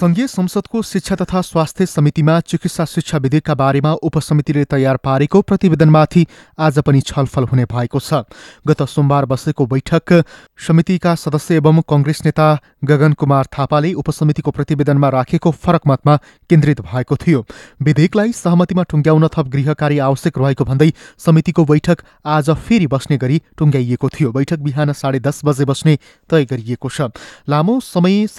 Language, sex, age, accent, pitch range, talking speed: English, male, 30-49, Indian, 140-165 Hz, 110 wpm